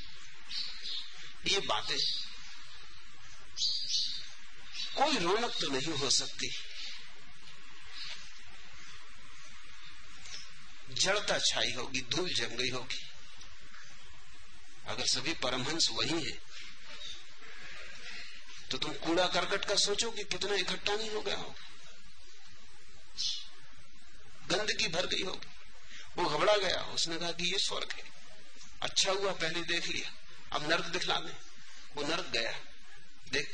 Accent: native